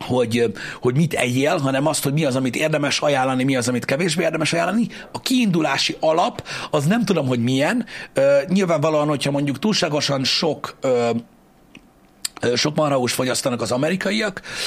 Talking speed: 145 wpm